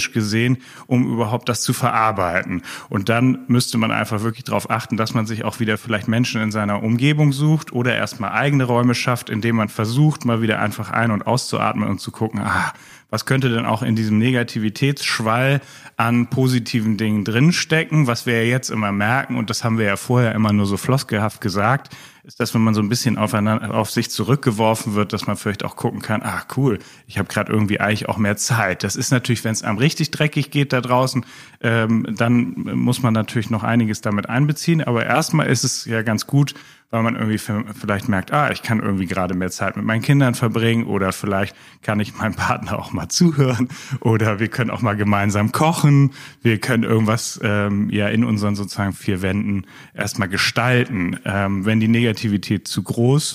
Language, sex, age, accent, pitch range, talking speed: German, male, 30-49, German, 105-125 Hz, 200 wpm